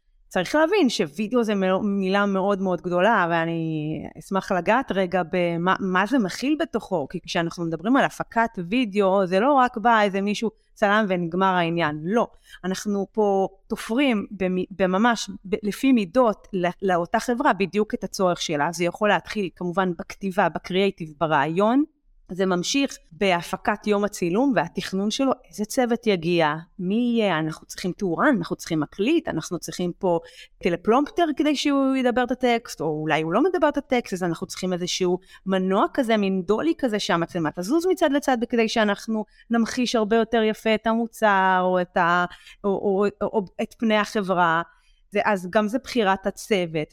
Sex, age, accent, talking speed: female, 30-49, native, 155 wpm